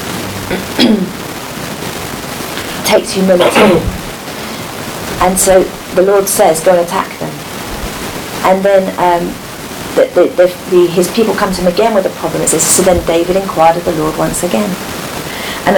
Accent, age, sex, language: British, 40-59, female, English